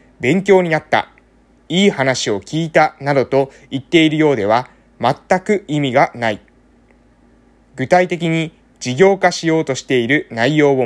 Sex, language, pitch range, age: male, Japanese, 110-170 Hz, 20-39